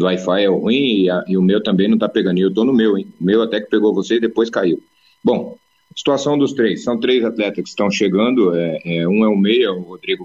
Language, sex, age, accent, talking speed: Portuguese, male, 40-59, Brazilian, 275 wpm